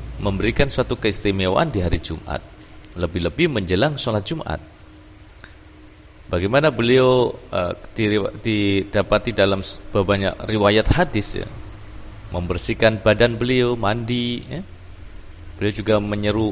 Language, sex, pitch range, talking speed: Indonesian, male, 100-120 Hz, 100 wpm